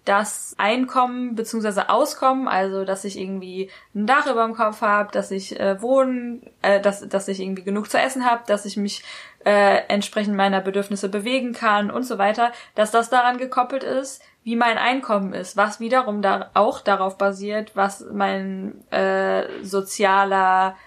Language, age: German, 20-39